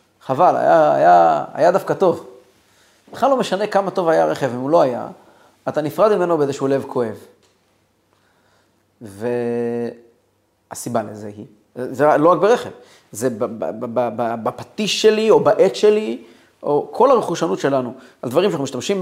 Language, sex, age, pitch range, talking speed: Hebrew, male, 30-49, 125-185 Hz, 140 wpm